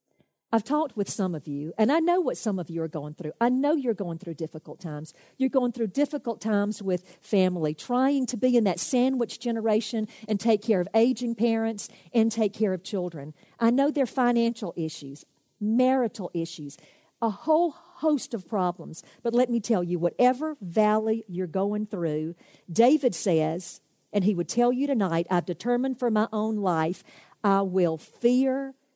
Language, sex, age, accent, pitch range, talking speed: English, female, 50-69, American, 180-245 Hz, 180 wpm